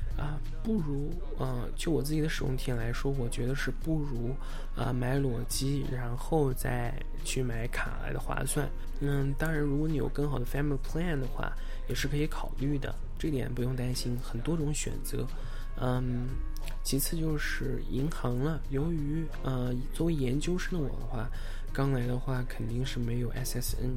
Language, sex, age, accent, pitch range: Chinese, male, 20-39, native, 120-145 Hz